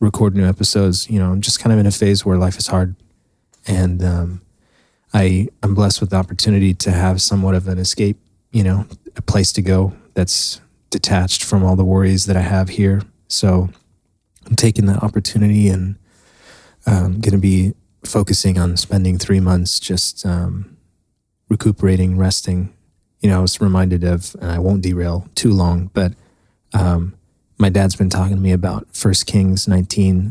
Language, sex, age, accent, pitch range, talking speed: English, male, 30-49, American, 90-100 Hz, 175 wpm